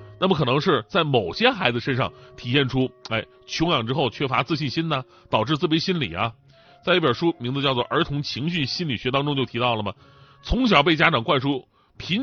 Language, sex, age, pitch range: Chinese, male, 30-49, 125-175 Hz